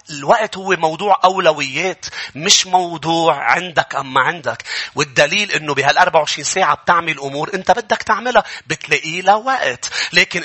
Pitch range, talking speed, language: 170-255 Hz, 130 wpm, English